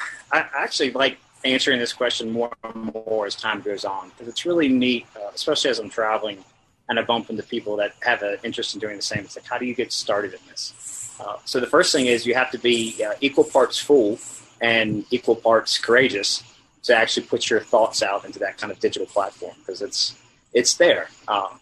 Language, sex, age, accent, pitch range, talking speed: English, male, 30-49, American, 110-125 Hz, 220 wpm